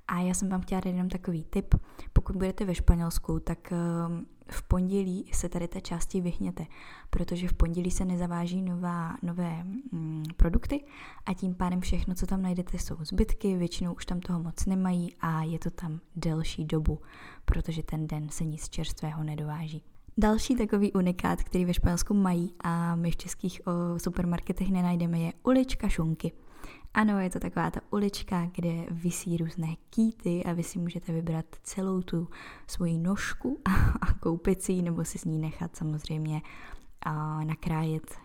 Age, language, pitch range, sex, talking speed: 10-29, Czech, 165-185 Hz, female, 160 wpm